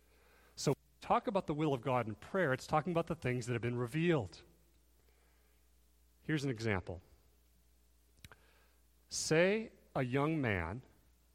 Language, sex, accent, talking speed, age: English, male, American, 125 wpm, 40-59